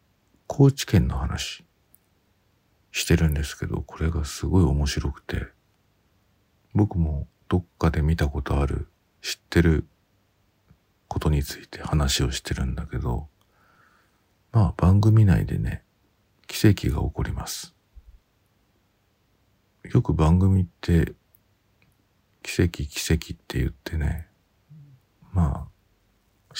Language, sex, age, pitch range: Japanese, male, 50-69, 80-100 Hz